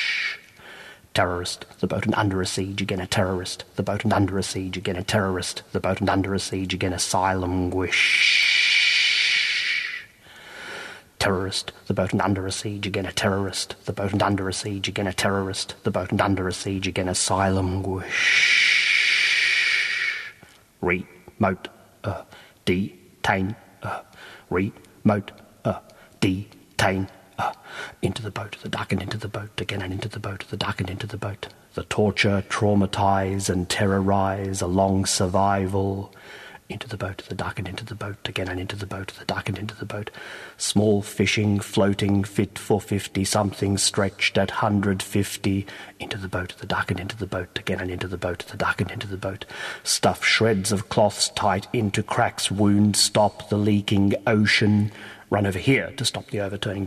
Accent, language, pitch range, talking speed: British, English, 95-105 Hz, 170 wpm